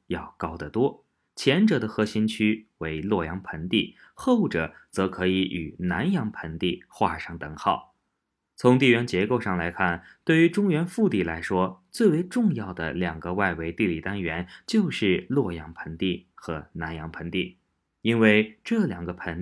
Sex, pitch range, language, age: male, 85-120 Hz, Chinese, 20-39